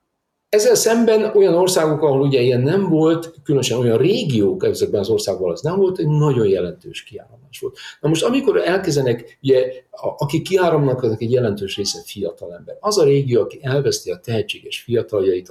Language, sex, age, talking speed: Hungarian, male, 50-69, 170 wpm